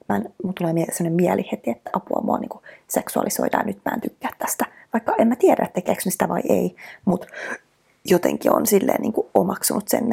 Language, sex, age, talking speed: Finnish, female, 20-39, 185 wpm